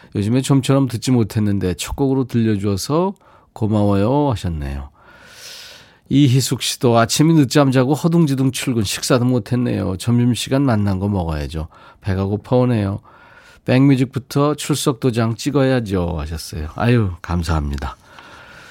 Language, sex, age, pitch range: Korean, male, 40-59, 105-145 Hz